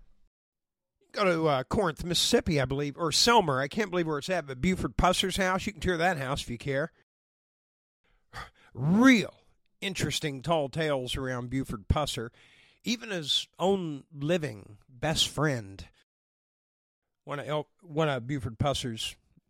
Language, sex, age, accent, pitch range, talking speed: English, male, 50-69, American, 125-165 Hz, 140 wpm